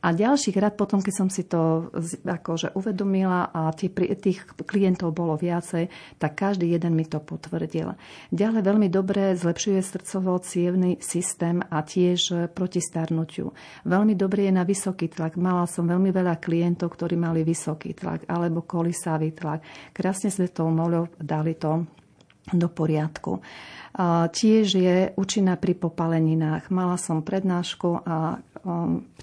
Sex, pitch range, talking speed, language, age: female, 165-185 Hz, 140 wpm, Slovak, 40-59